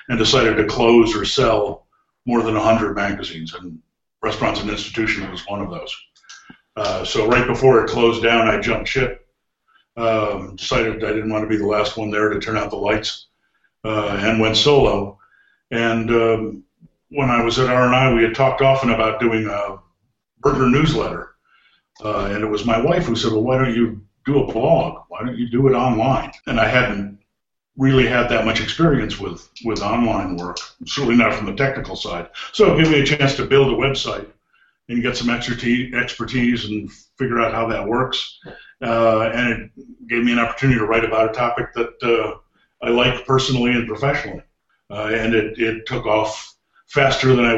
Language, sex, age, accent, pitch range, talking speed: English, male, 50-69, American, 110-125 Hz, 190 wpm